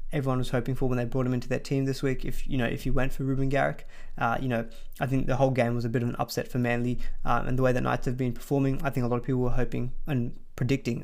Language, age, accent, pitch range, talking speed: English, 20-39, Australian, 125-135 Hz, 310 wpm